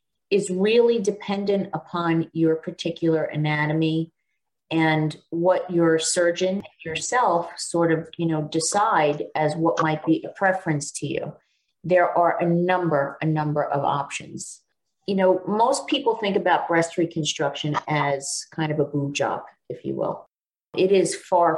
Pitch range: 155-195 Hz